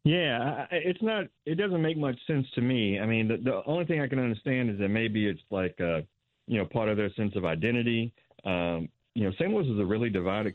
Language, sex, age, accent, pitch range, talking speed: English, male, 40-59, American, 95-120 Hz, 235 wpm